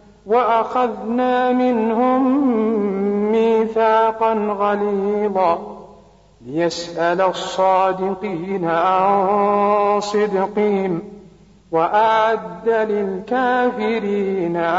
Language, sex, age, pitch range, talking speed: Arabic, male, 50-69, 205-225 Hz, 40 wpm